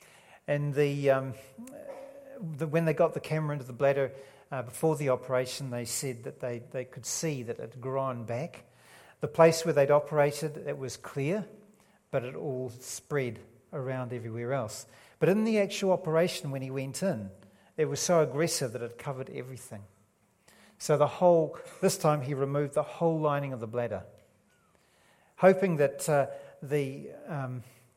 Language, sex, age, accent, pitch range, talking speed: English, male, 50-69, Australian, 125-155 Hz, 170 wpm